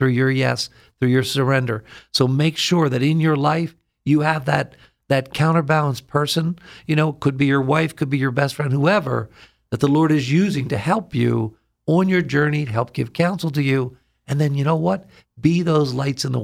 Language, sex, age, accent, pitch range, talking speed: English, male, 50-69, American, 130-160 Hz, 210 wpm